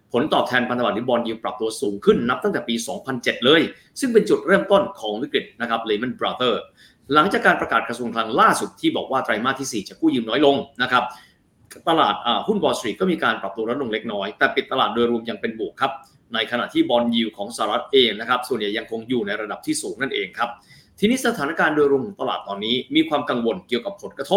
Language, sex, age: Thai, male, 20-39